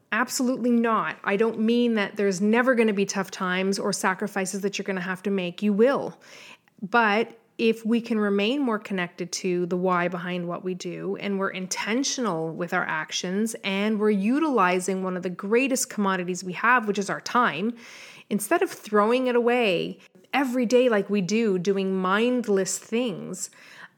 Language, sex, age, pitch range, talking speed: English, female, 30-49, 190-230 Hz, 180 wpm